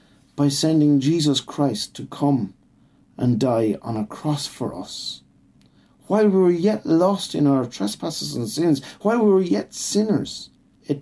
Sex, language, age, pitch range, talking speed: male, English, 50-69, 125-160 Hz, 160 wpm